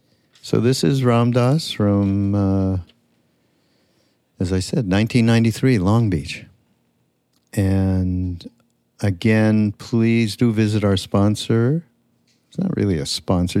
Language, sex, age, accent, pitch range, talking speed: English, male, 50-69, American, 90-110 Hz, 110 wpm